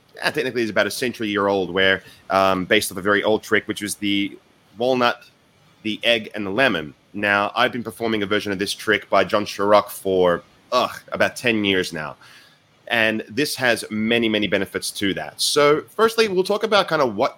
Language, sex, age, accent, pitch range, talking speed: English, male, 30-49, Australian, 100-130 Hz, 195 wpm